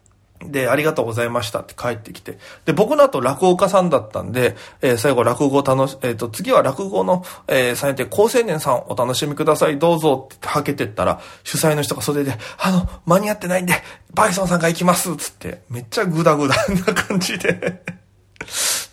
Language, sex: Japanese, male